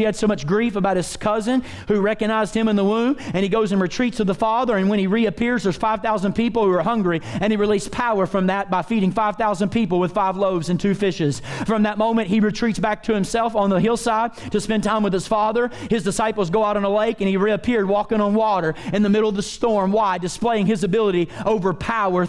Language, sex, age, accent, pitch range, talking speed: English, male, 30-49, American, 205-235 Hz, 240 wpm